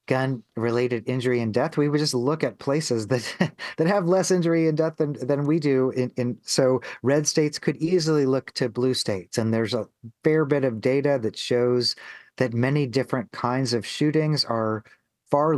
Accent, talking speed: American, 195 wpm